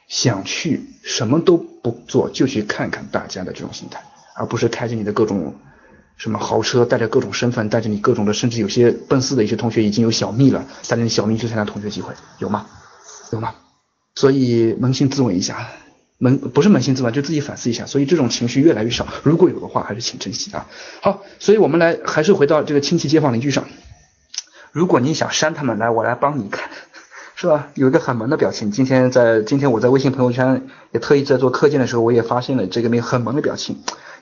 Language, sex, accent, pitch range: Chinese, male, native, 115-155 Hz